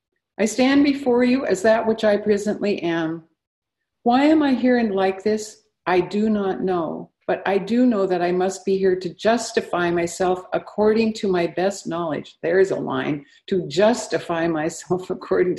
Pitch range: 175-235 Hz